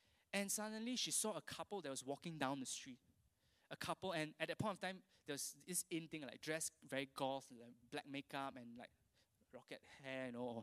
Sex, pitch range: male, 130-210 Hz